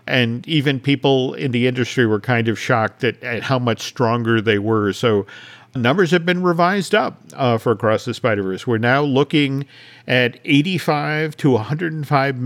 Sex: male